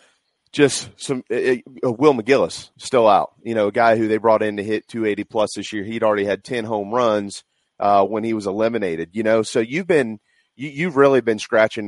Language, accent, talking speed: English, American, 215 wpm